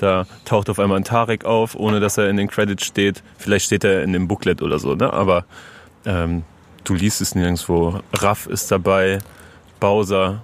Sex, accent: male, German